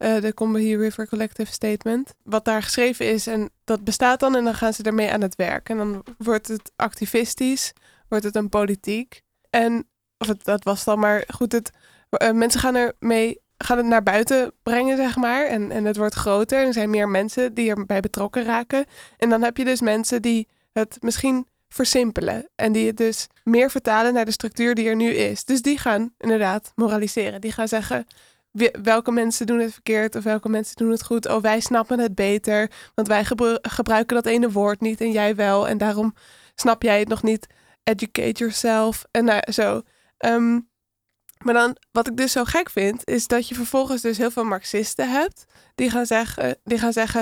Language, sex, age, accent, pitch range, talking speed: Dutch, female, 20-39, Dutch, 220-245 Hz, 195 wpm